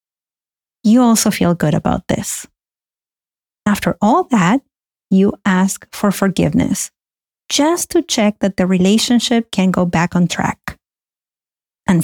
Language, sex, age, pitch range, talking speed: English, female, 30-49, 190-235 Hz, 125 wpm